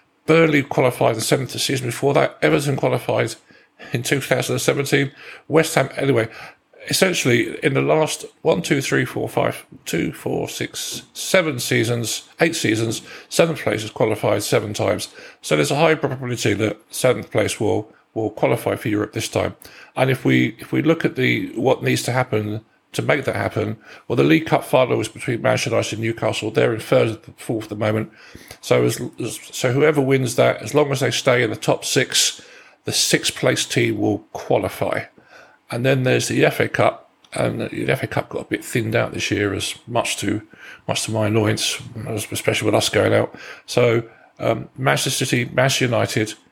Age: 50-69